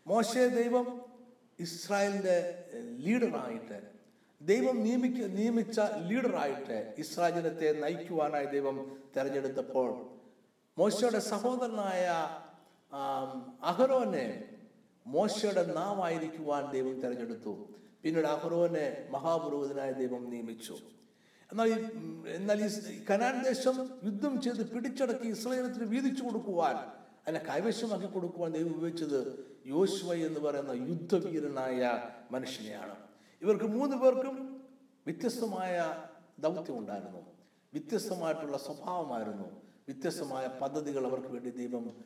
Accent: native